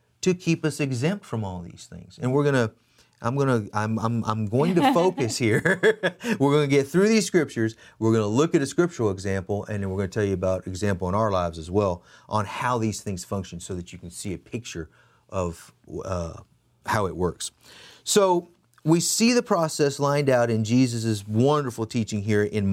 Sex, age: male, 30-49